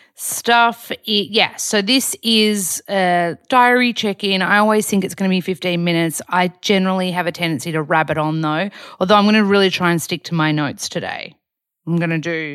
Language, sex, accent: English, female, Australian